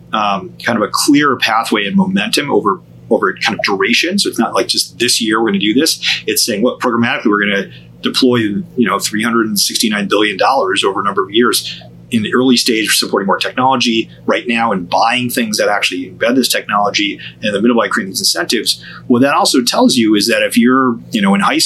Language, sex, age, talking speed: English, male, 40-59, 220 wpm